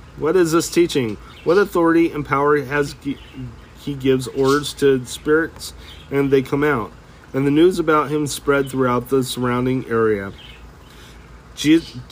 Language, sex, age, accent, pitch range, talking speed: English, male, 40-59, American, 115-150 Hz, 145 wpm